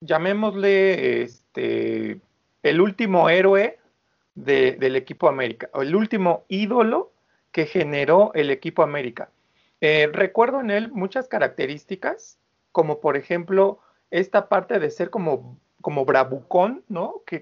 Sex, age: male, 40-59